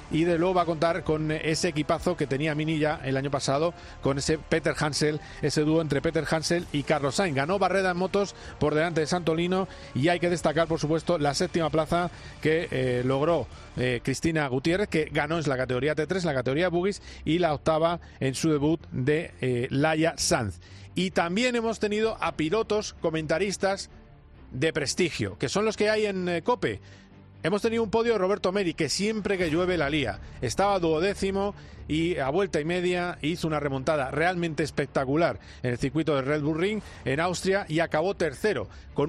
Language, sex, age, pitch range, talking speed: Spanish, male, 40-59, 150-185 Hz, 190 wpm